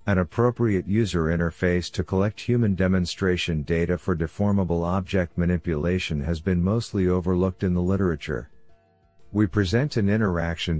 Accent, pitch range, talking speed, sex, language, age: American, 85-105 Hz, 135 wpm, male, English, 50-69